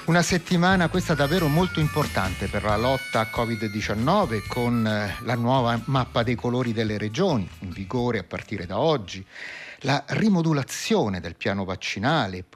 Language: Italian